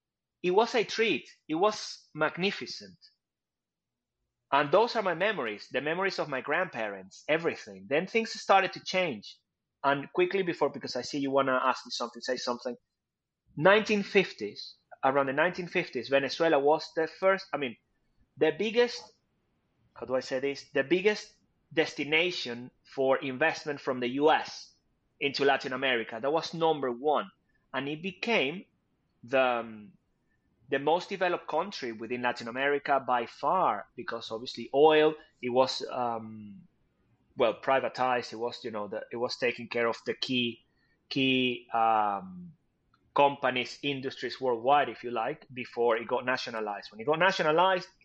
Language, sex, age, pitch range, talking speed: English, male, 30-49, 125-170 Hz, 150 wpm